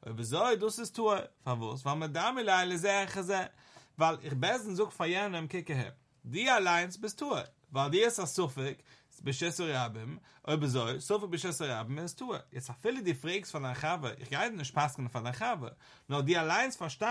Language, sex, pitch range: English, male, 140-195 Hz